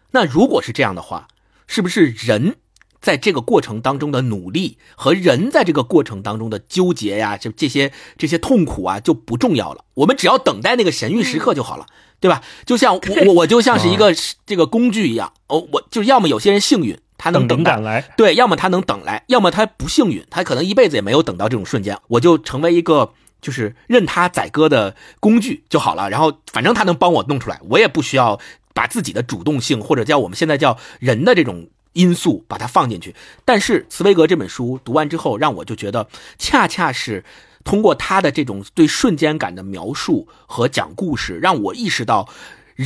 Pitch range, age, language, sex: 125-200 Hz, 50-69, Chinese, male